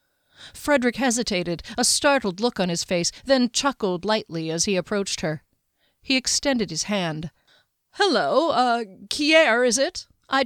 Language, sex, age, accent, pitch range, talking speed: English, female, 40-59, American, 175-280 Hz, 140 wpm